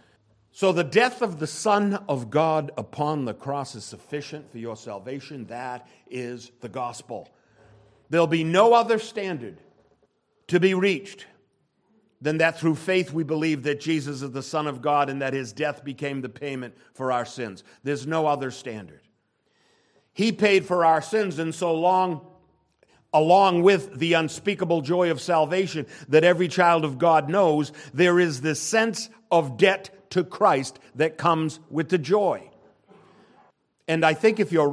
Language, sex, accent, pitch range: English, male, American, 145-200 Hz